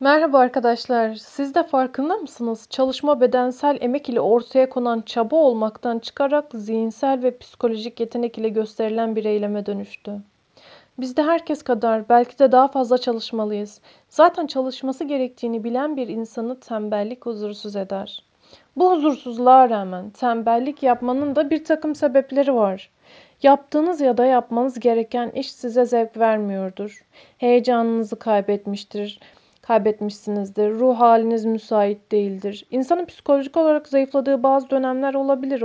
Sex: female